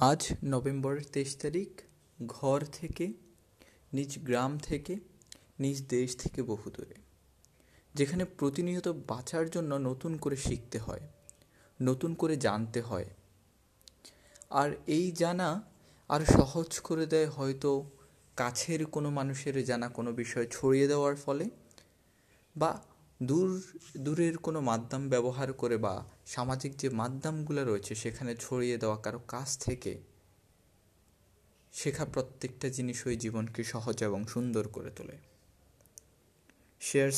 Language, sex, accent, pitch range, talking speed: Bengali, male, native, 120-160 Hz, 80 wpm